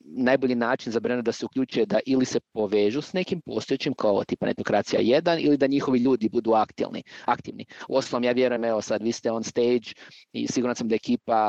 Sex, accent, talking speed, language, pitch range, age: male, native, 200 wpm, Croatian, 110-130 Hz, 30-49